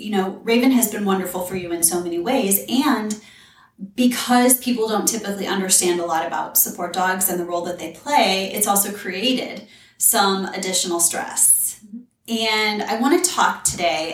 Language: English